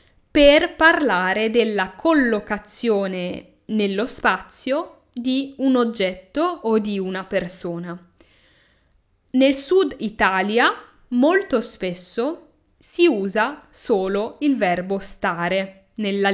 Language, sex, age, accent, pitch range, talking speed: Italian, female, 10-29, native, 195-265 Hz, 90 wpm